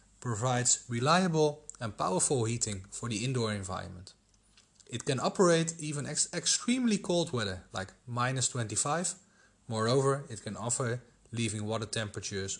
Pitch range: 100-135 Hz